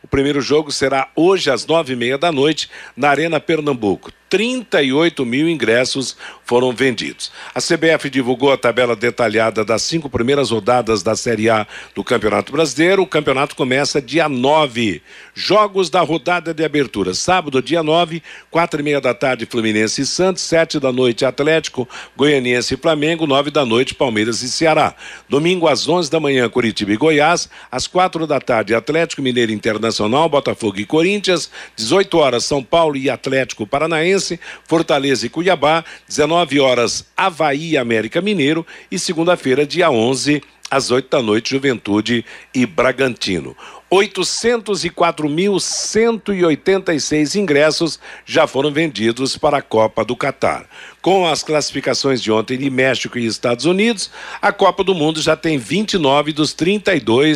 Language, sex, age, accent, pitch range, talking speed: Portuguese, male, 60-79, Brazilian, 125-165 Hz, 150 wpm